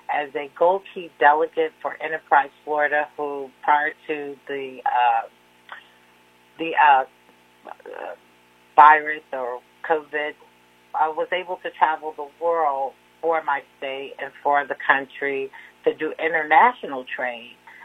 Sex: female